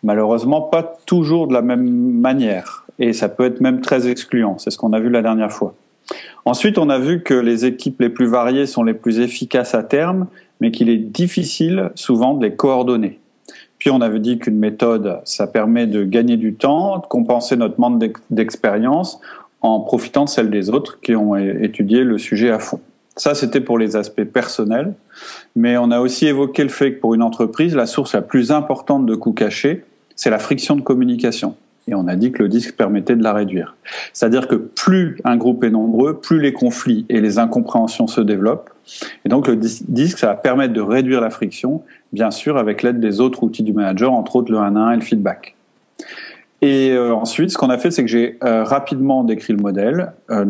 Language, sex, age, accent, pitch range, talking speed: French, male, 40-59, French, 110-140 Hz, 205 wpm